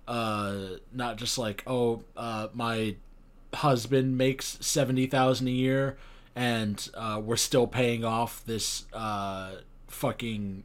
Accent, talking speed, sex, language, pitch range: American, 120 wpm, male, English, 110-135 Hz